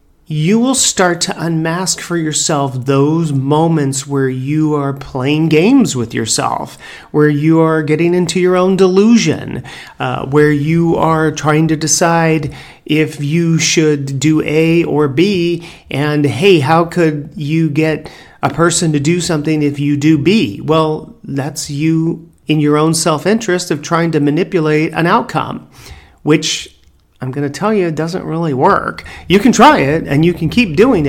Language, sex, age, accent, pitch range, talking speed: English, male, 40-59, American, 135-165 Hz, 165 wpm